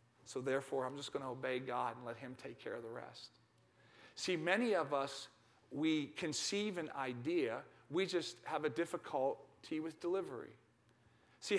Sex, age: male, 40-59